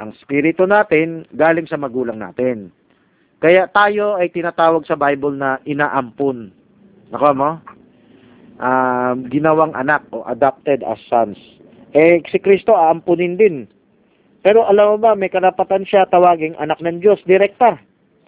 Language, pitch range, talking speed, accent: Filipino, 150-200 Hz, 140 wpm, native